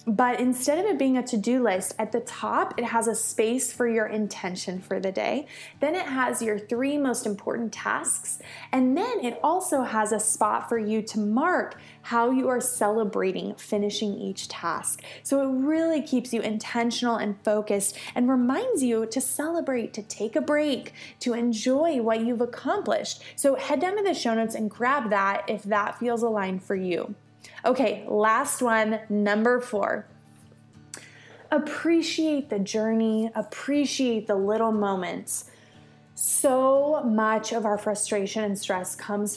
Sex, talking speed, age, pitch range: female, 160 wpm, 20-39, 210-260 Hz